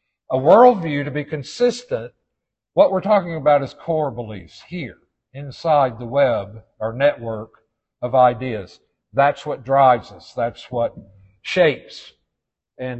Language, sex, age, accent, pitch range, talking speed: English, male, 60-79, American, 125-165 Hz, 130 wpm